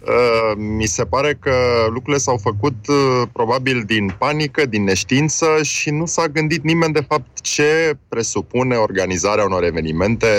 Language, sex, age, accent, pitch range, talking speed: Romanian, male, 20-39, native, 100-145 Hz, 140 wpm